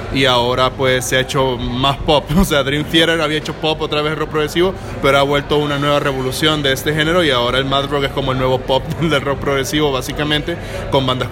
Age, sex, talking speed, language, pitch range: 20-39, male, 235 wpm, English, 125-145 Hz